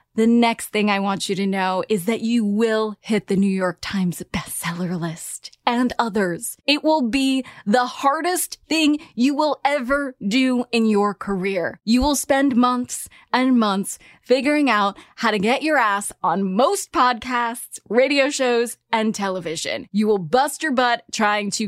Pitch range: 205-270 Hz